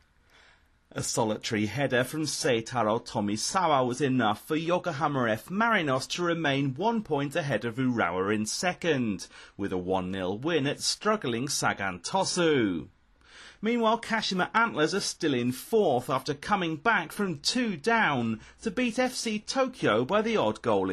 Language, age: Japanese, 30-49